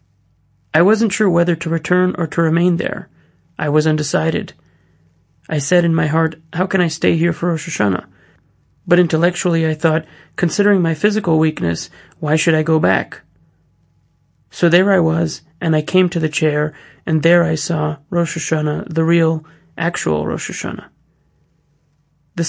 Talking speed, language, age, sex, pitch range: 165 wpm, English, 30-49, male, 155-175 Hz